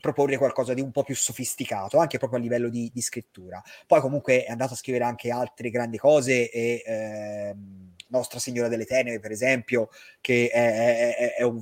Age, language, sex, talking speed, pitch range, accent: 30-49, Italian, male, 190 wpm, 115-140 Hz, native